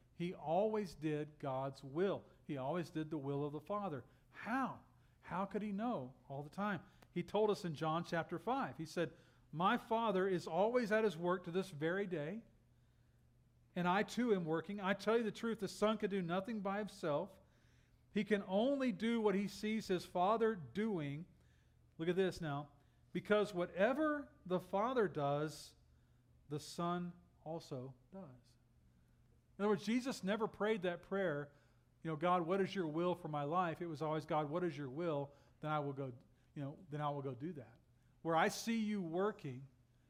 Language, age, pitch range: English, 40-59, 140-195 Hz